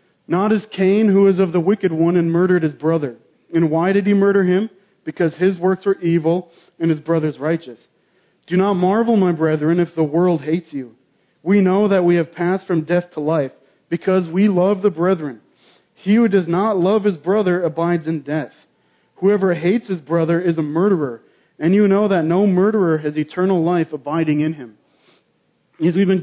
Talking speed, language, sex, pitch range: 195 wpm, English, male, 165-195 Hz